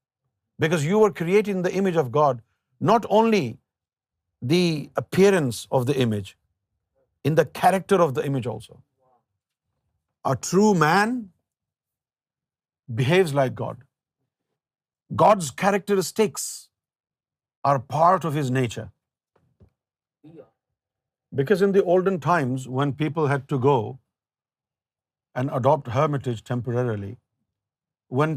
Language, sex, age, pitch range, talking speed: Urdu, male, 50-69, 120-170 Hz, 105 wpm